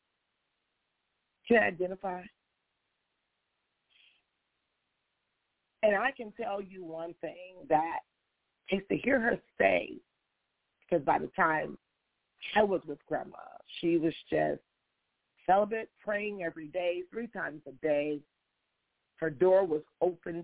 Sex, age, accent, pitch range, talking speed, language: female, 40-59, American, 150-195 Hz, 110 wpm, English